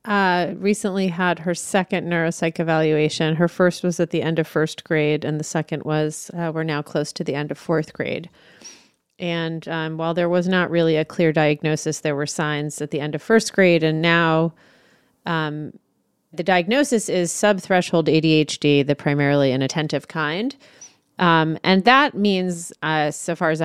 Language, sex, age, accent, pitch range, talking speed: English, female, 30-49, American, 145-175 Hz, 175 wpm